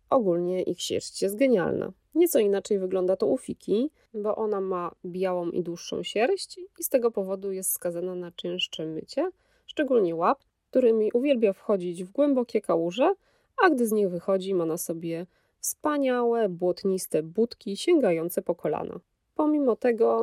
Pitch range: 180-240 Hz